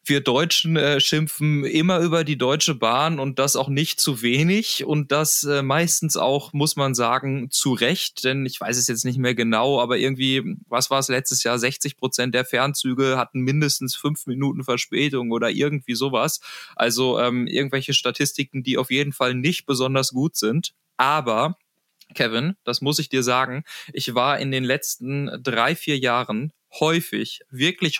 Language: German